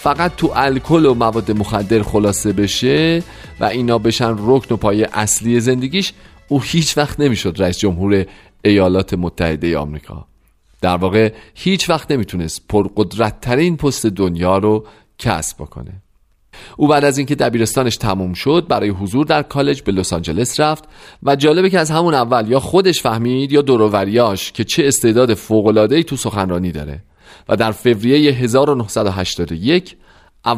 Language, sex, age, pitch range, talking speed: Persian, male, 40-59, 95-145 Hz, 150 wpm